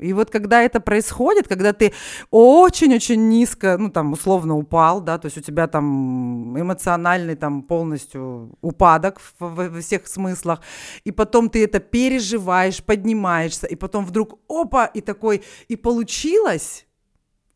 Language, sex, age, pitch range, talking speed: Russian, female, 30-49, 180-260 Hz, 135 wpm